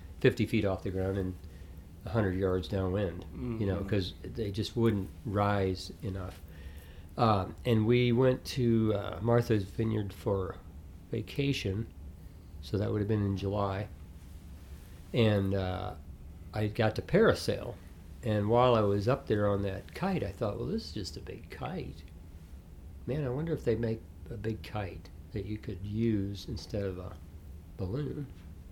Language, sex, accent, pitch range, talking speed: English, male, American, 85-110 Hz, 155 wpm